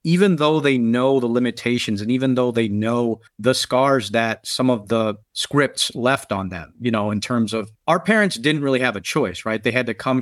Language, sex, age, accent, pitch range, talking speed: English, male, 40-59, American, 110-130 Hz, 225 wpm